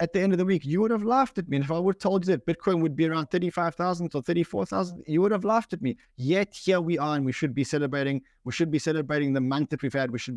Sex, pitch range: male, 135-175 Hz